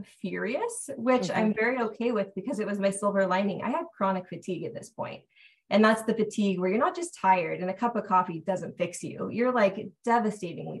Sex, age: female, 20-39